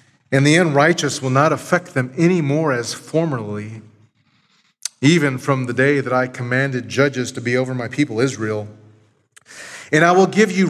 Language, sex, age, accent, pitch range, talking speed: English, male, 30-49, American, 120-160 Hz, 170 wpm